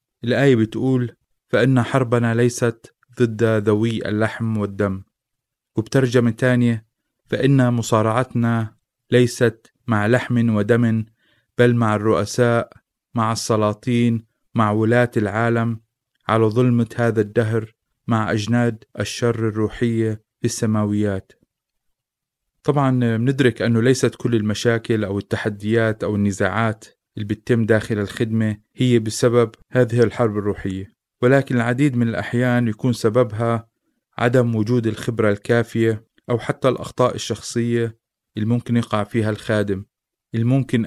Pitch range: 110-120 Hz